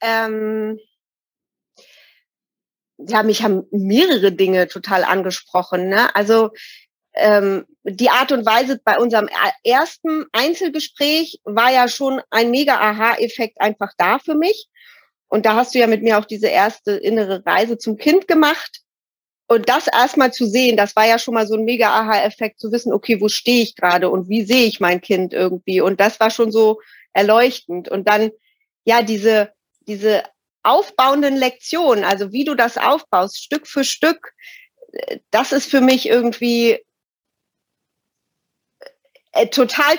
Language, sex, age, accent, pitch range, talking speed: German, female, 30-49, German, 215-295 Hz, 145 wpm